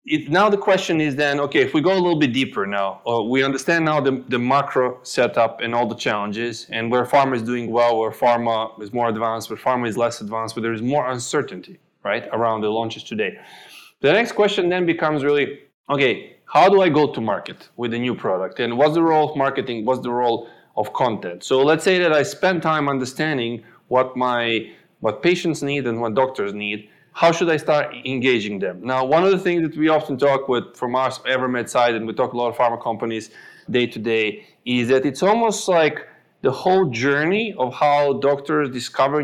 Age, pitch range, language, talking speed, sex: 20-39, 120-155 Hz, English, 215 wpm, male